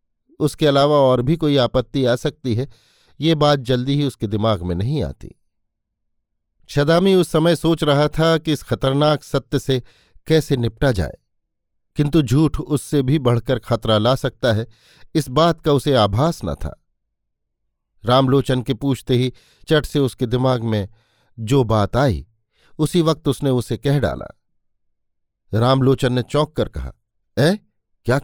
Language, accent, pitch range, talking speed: Hindi, native, 115-155 Hz, 155 wpm